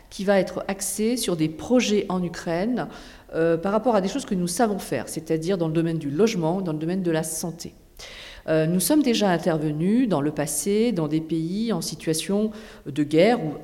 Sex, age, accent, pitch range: female, 50-69, French, 165-215 Hz